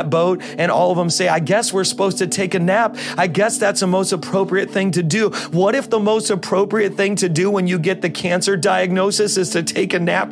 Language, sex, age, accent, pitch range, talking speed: English, male, 40-59, American, 195-260 Hz, 245 wpm